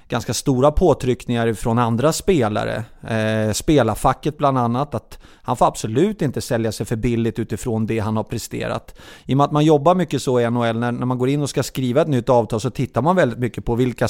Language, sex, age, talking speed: English, male, 30-49, 220 wpm